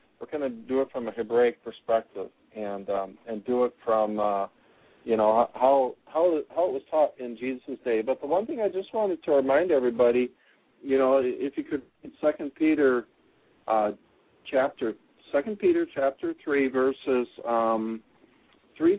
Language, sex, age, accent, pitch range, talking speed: English, male, 50-69, American, 115-140 Hz, 165 wpm